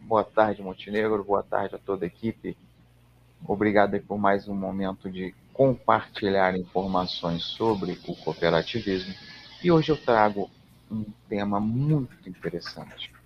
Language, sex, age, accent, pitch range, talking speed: Portuguese, male, 40-59, Brazilian, 95-125 Hz, 125 wpm